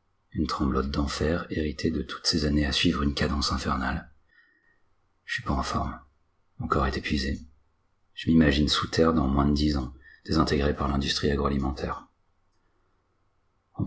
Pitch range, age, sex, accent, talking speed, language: 70-90 Hz, 40-59, male, French, 155 wpm, French